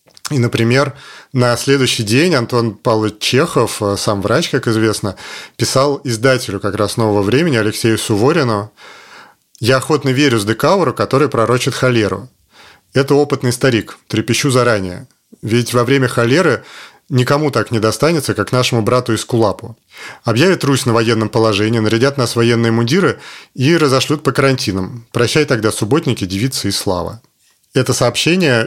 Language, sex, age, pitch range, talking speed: Russian, male, 30-49, 110-130 Hz, 140 wpm